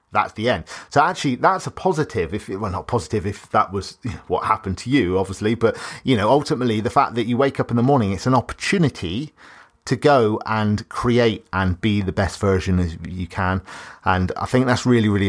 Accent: British